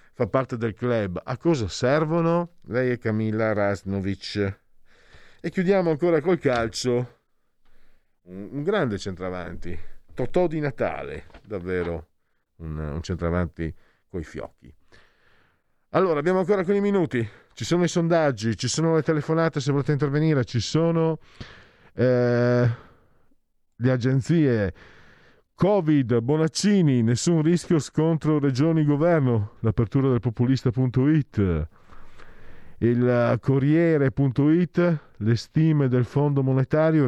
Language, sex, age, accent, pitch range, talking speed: Italian, male, 40-59, native, 105-155 Hz, 105 wpm